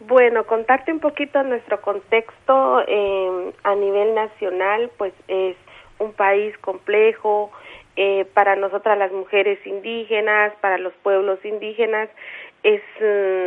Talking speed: 115 wpm